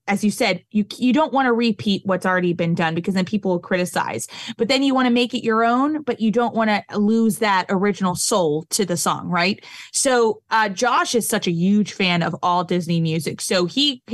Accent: American